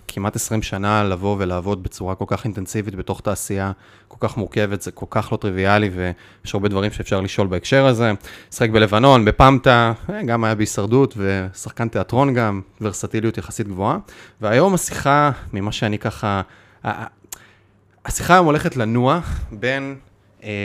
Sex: male